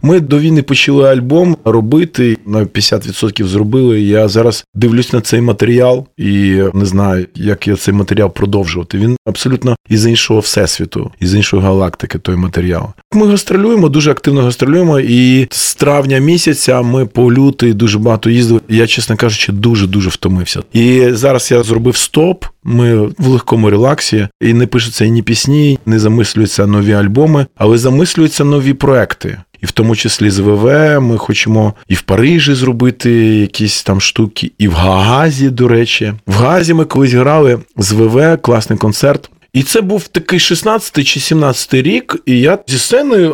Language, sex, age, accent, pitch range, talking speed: Ukrainian, male, 20-39, native, 110-145 Hz, 160 wpm